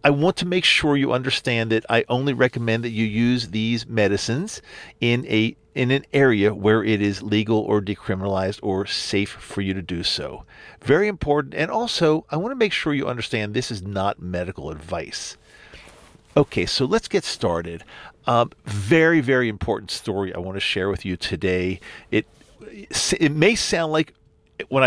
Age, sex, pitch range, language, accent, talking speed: 50-69, male, 100-135 Hz, English, American, 175 wpm